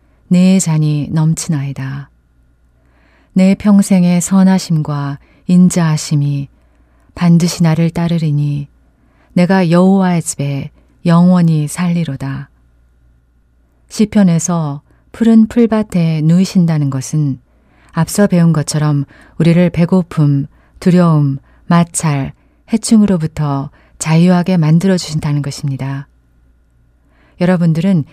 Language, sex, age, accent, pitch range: Korean, female, 30-49, native, 140-180 Hz